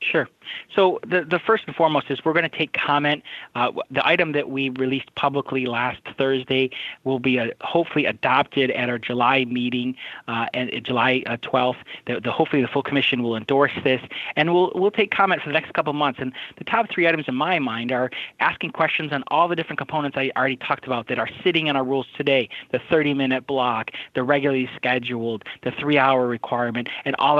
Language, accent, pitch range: English, American, 125-160 Hz